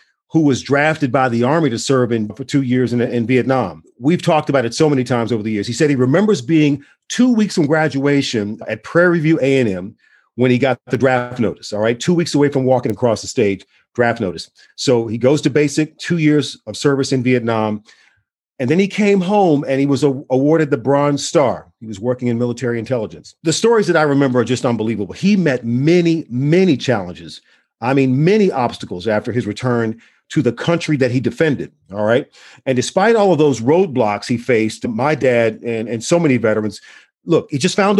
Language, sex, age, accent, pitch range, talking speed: English, male, 40-59, American, 120-155 Hz, 210 wpm